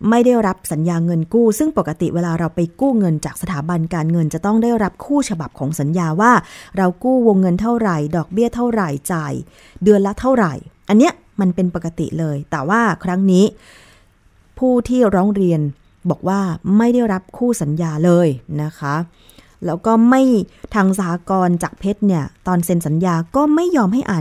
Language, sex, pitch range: Thai, female, 165-220 Hz